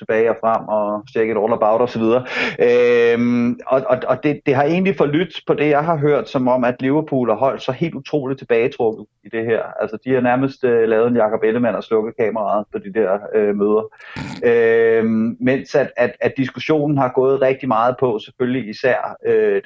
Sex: male